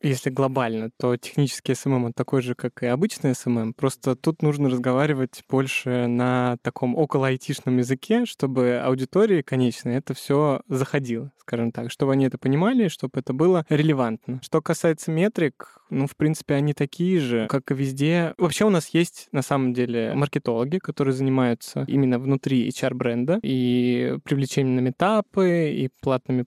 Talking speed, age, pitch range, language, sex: 150 wpm, 20-39, 130-155 Hz, Russian, male